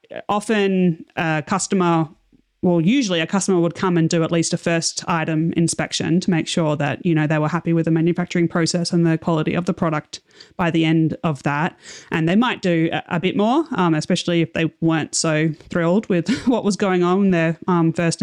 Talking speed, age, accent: 210 wpm, 30-49, Australian